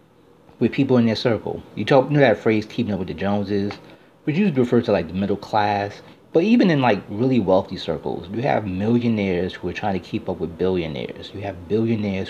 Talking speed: 220 wpm